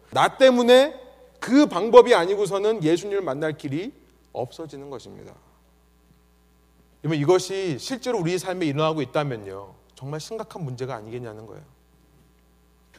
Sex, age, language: male, 30-49, Korean